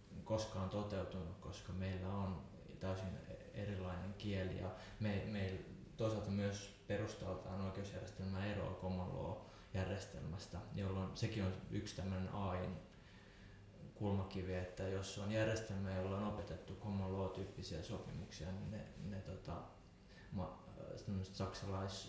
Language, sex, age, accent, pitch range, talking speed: Finnish, male, 20-39, native, 95-105 Hz, 110 wpm